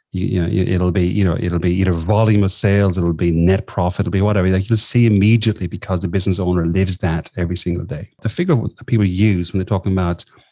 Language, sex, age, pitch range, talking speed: English, male, 30-49, 90-110 Hz, 240 wpm